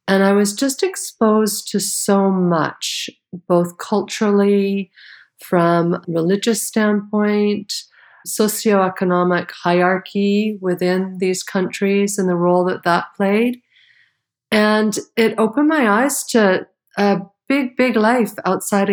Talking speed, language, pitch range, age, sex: 115 wpm, English, 170-210 Hz, 50-69, female